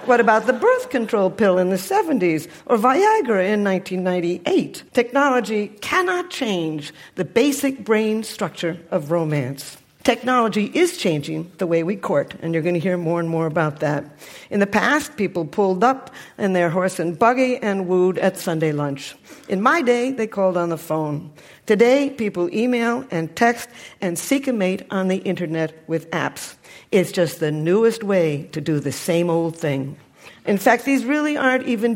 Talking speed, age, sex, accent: 175 wpm, 60-79, female, American